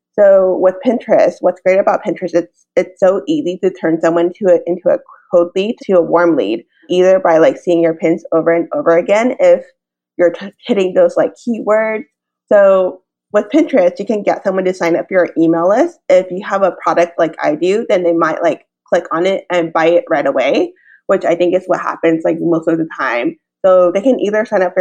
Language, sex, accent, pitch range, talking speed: English, female, American, 170-230 Hz, 225 wpm